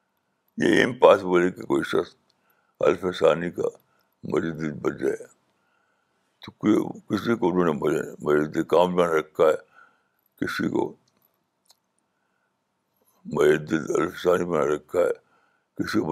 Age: 60-79